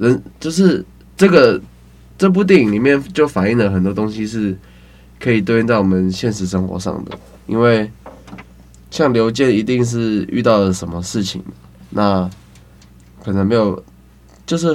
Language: Chinese